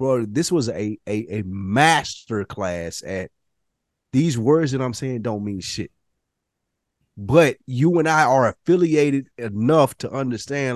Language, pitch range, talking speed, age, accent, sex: English, 110-165 Hz, 140 wpm, 30-49, American, male